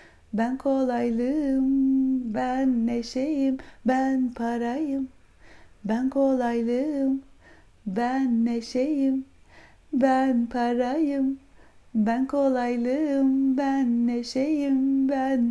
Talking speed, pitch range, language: 65 wpm, 245-275 Hz, Turkish